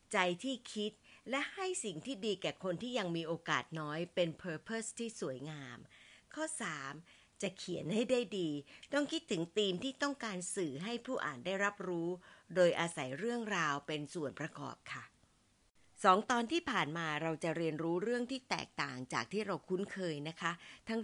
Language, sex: Thai, female